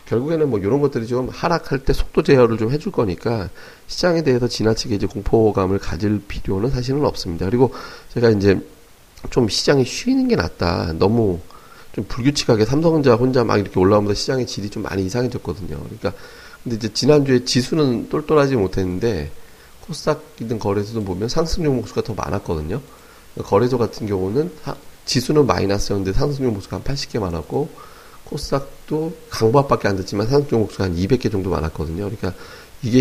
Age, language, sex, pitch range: 40-59, Korean, male, 95-125 Hz